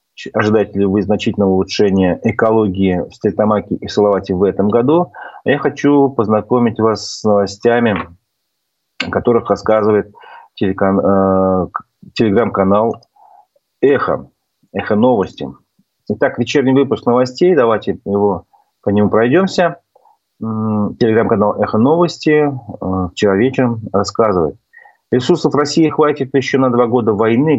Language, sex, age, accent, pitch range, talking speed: Russian, male, 30-49, native, 105-135 Hz, 100 wpm